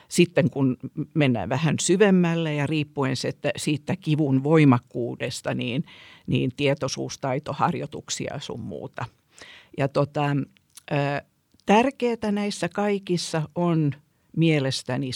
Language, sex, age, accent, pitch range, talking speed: Finnish, female, 50-69, native, 135-175 Hz, 85 wpm